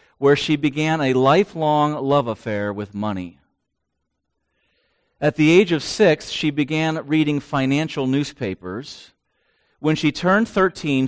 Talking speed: 125 wpm